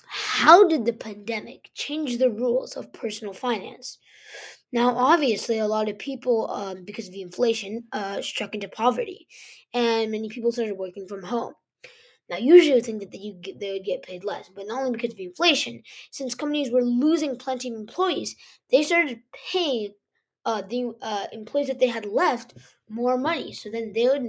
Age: 20-39